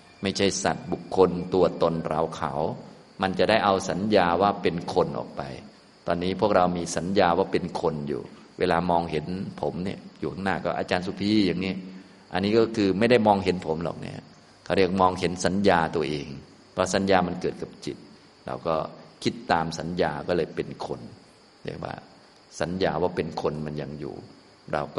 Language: Thai